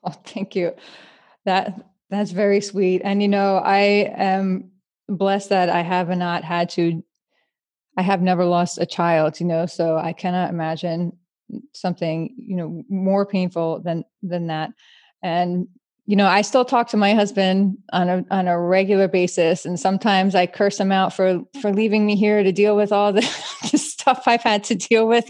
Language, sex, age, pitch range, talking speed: English, female, 20-39, 175-205 Hz, 185 wpm